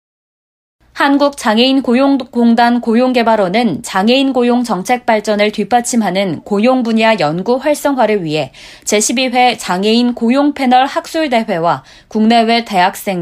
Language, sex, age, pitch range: Korean, female, 20-39, 200-250 Hz